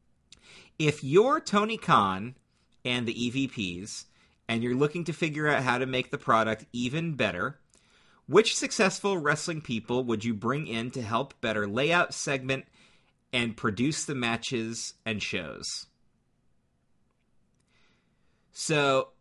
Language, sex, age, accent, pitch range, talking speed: English, male, 40-59, American, 110-140 Hz, 125 wpm